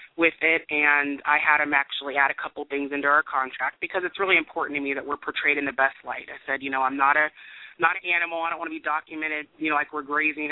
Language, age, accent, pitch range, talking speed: English, 30-49, American, 145-160 Hz, 275 wpm